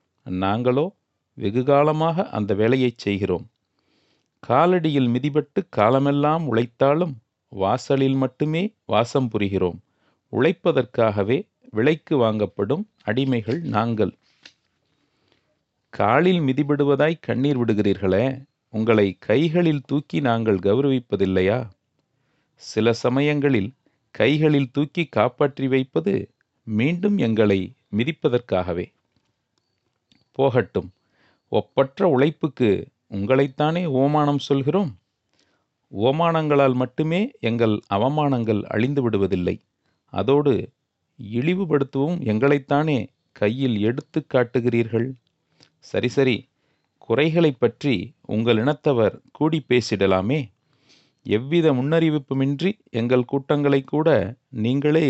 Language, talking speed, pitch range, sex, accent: Tamil, 75 wpm, 110-150 Hz, male, native